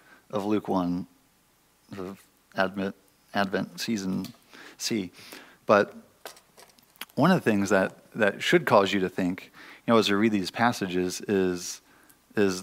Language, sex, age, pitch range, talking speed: English, male, 40-59, 95-105 Hz, 140 wpm